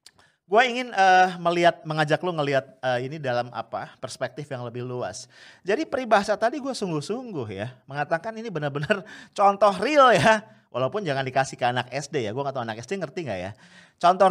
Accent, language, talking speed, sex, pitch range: Indonesian, English, 180 wpm, male, 145-225 Hz